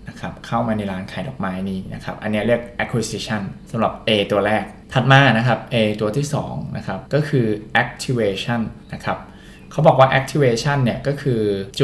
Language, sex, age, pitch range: Thai, male, 20-39, 105-130 Hz